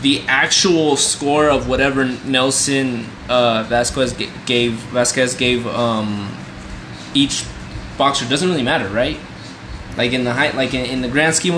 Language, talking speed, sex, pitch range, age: English, 150 wpm, male, 110-135 Hz, 20-39